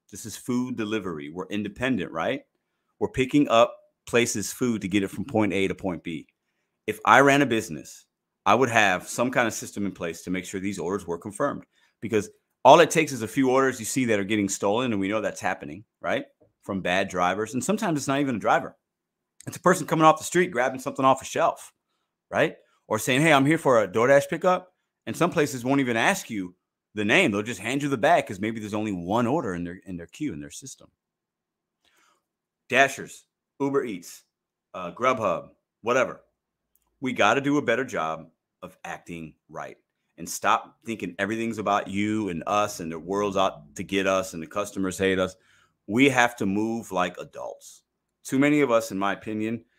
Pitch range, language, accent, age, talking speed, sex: 95-135 Hz, English, American, 30-49, 205 wpm, male